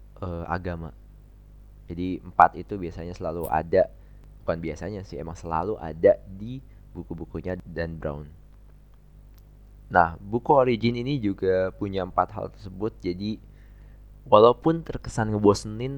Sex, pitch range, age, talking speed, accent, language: male, 85-105 Hz, 20-39, 115 wpm, native, Indonesian